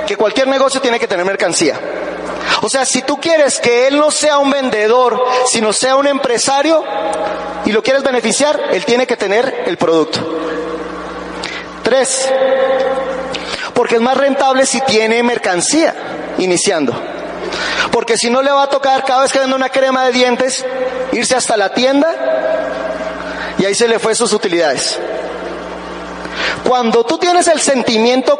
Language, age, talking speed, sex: Spanish, 30-49, 150 wpm, male